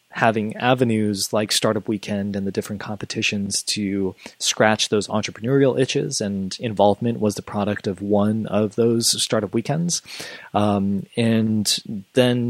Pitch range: 95-115 Hz